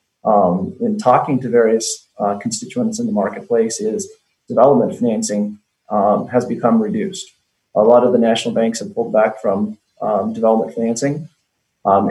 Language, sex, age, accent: English, male, 30-49, American